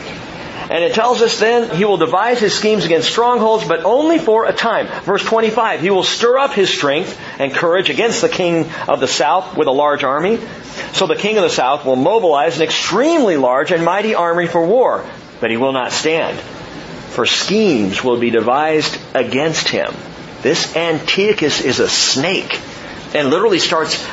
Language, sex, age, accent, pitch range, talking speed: English, male, 40-59, American, 140-200 Hz, 180 wpm